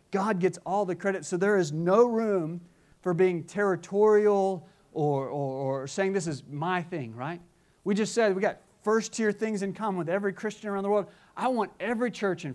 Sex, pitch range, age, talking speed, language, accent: male, 170-220 Hz, 30-49, 200 wpm, English, American